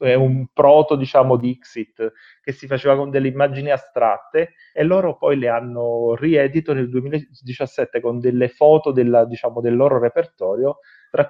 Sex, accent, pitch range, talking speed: male, native, 115-140 Hz, 155 wpm